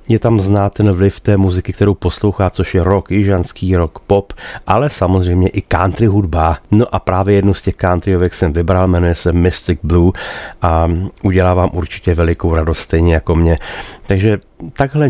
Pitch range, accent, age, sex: 85-100 Hz, native, 40-59, male